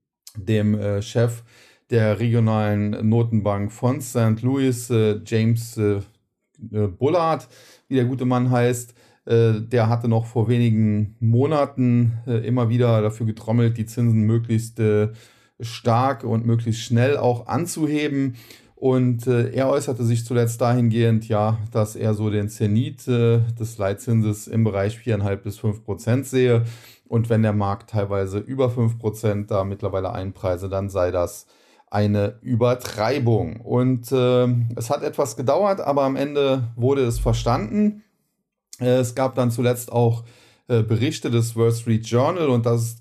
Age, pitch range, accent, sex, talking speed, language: 40-59, 110-125 Hz, German, male, 145 wpm, German